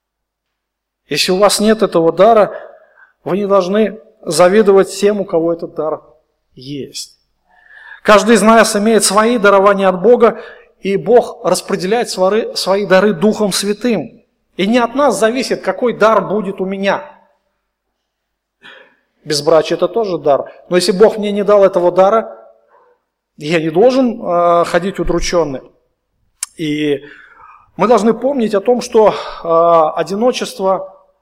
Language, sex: Russian, male